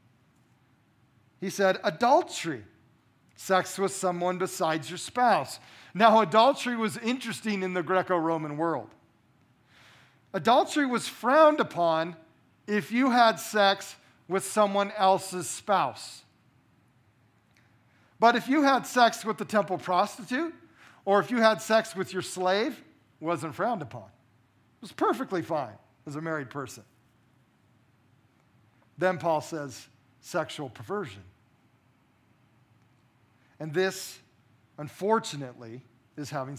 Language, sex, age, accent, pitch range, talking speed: English, male, 40-59, American, 125-190 Hz, 110 wpm